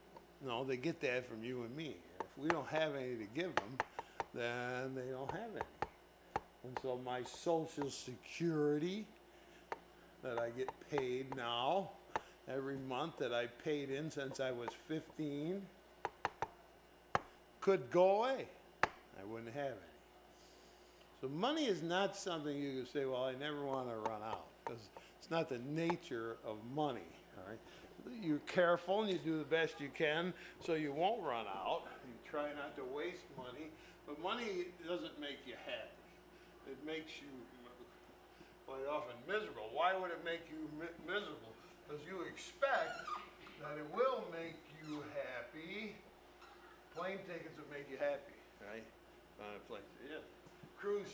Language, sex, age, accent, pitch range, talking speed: English, male, 50-69, American, 130-170 Hz, 155 wpm